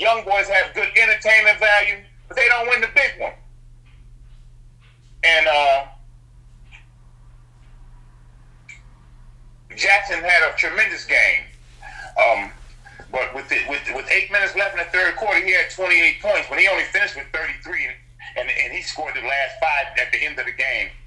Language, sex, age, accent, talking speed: English, male, 50-69, American, 160 wpm